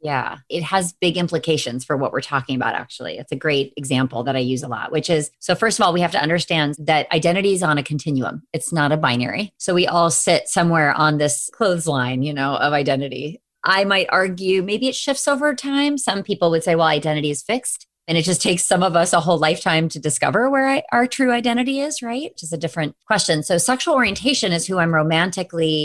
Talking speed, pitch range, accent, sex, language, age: 225 wpm, 150-195 Hz, American, female, English, 30-49